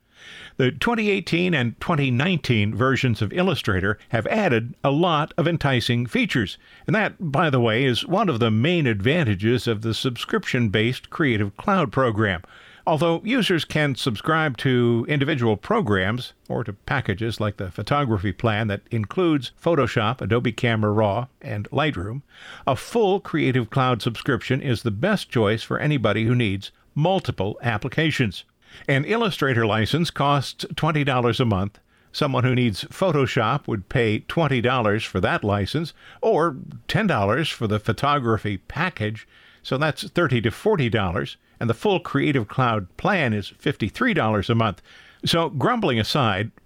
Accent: American